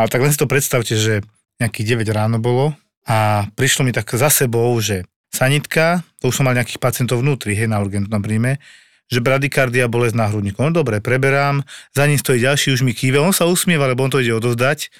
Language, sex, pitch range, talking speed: Slovak, male, 115-140 Hz, 210 wpm